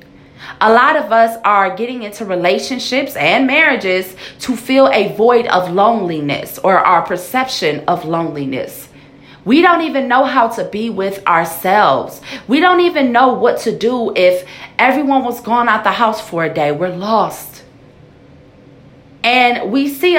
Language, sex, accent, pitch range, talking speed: English, female, American, 200-290 Hz, 155 wpm